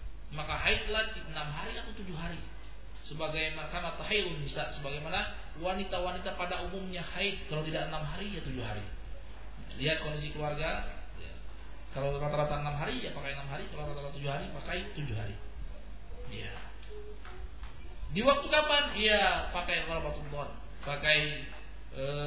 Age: 40-59